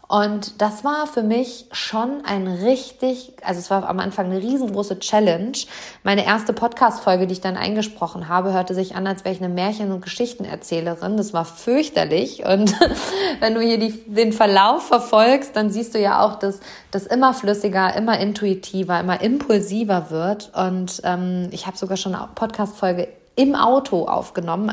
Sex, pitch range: female, 190-230 Hz